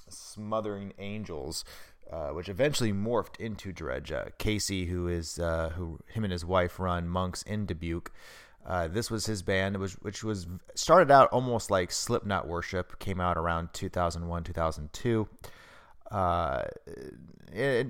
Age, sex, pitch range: 30-49, male, 85-105 Hz